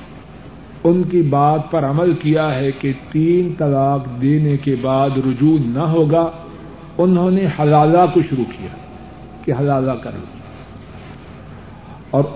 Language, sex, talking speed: Urdu, male, 125 wpm